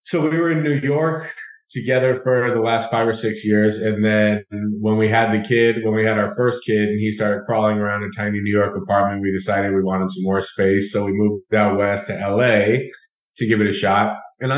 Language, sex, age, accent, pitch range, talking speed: English, male, 20-39, American, 100-115 Hz, 235 wpm